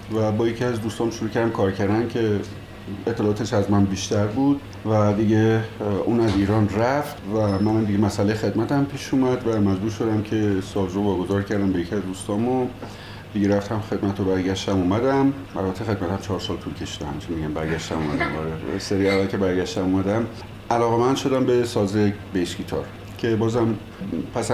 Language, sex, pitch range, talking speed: Persian, male, 95-115 Hz, 170 wpm